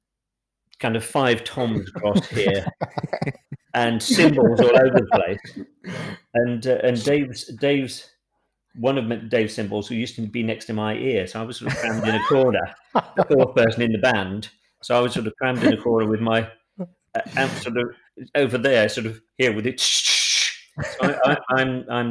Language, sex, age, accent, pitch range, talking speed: English, male, 40-59, British, 100-125 Hz, 195 wpm